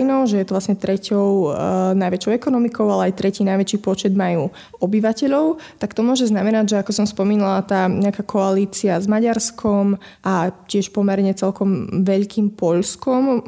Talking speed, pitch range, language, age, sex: 145 wpm, 190-205 Hz, Slovak, 20-39, female